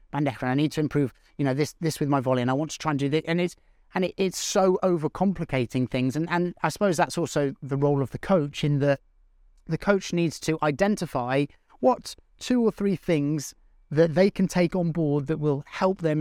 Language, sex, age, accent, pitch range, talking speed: English, male, 30-49, British, 135-175 Hz, 225 wpm